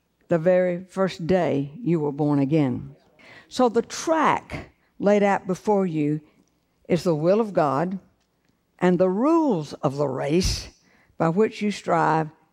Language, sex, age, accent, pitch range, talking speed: English, female, 60-79, American, 160-210 Hz, 145 wpm